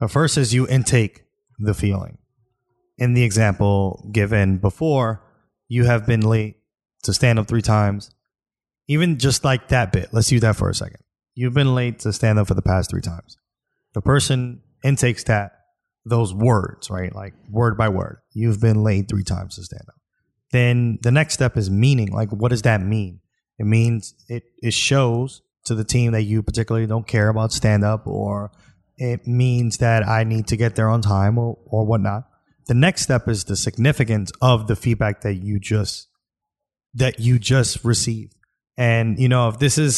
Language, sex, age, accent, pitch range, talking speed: English, male, 20-39, American, 105-125 Hz, 190 wpm